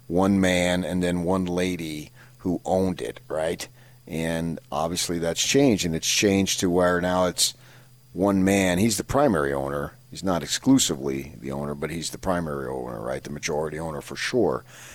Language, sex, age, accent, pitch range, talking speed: English, male, 40-59, American, 85-110 Hz, 175 wpm